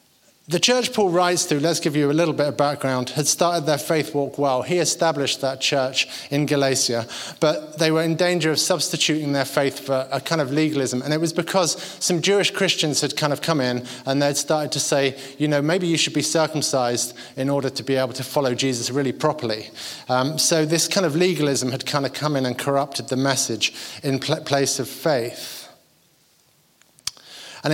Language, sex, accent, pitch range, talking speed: English, male, British, 135-165 Hz, 205 wpm